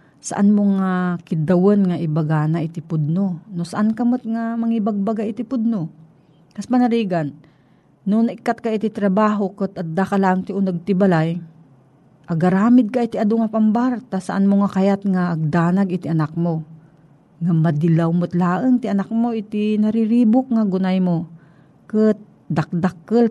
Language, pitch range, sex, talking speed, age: Filipino, 165-220 Hz, female, 145 wpm, 40-59